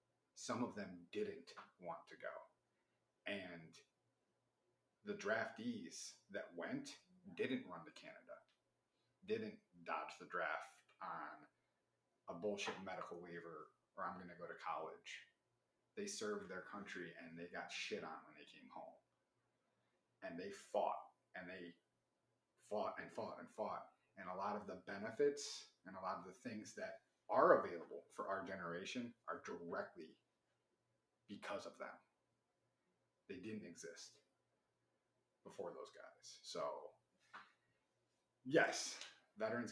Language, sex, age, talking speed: English, male, 30-49, 130 wpm